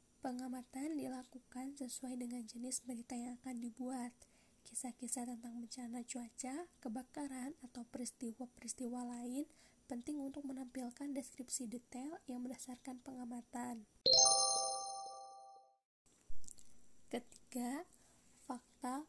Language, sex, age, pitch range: Indonesian, female, 10-29, 240-265 Hz